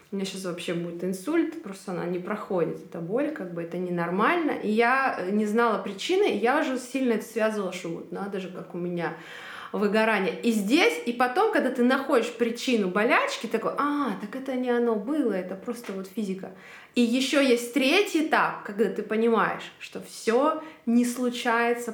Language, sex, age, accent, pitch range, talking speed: Russian, female, 20-39, native, 190-255 Hz, 185 wpm